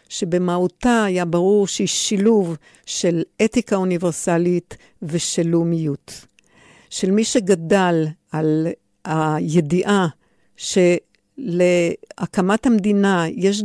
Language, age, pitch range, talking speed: Hebrew, 50-69, 170-205 Hz, 80 wpm